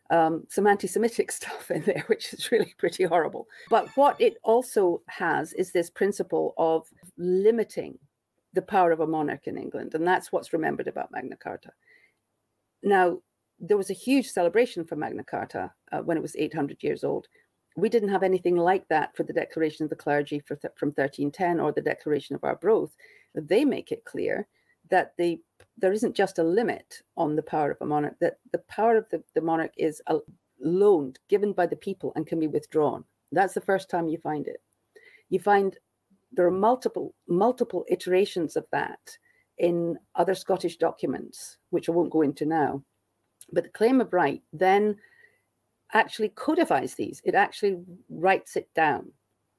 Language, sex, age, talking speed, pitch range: English, female, 50-69, 180 wpm, 165-235 Hz